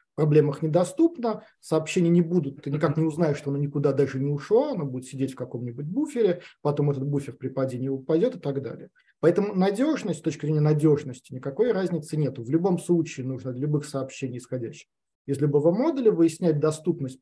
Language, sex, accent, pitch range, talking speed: Russian, male, native, 140-175 Hz, 185 wpm